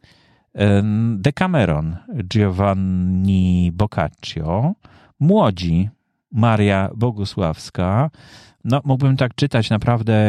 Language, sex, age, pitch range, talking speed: Polish, male, 40-59, 90-125 Hz, 70 wpm